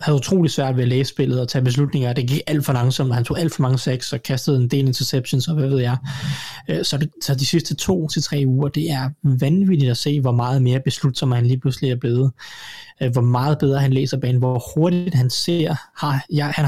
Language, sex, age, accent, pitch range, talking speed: Danish, male, 20-39, native, 130-150 Hz, 240 wpm